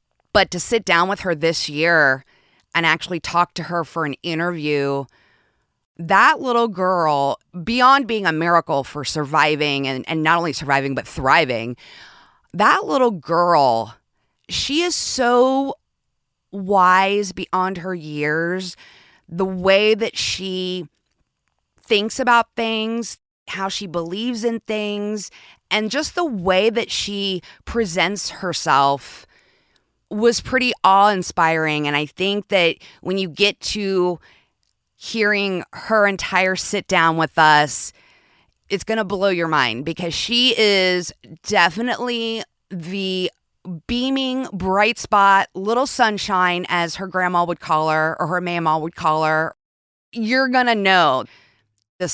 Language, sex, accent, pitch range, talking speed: English, female, American, 150-210 Hz, 130 wpm